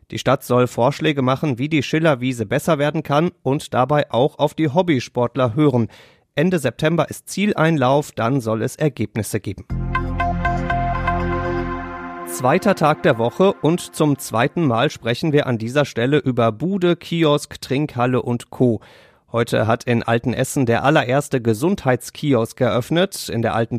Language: German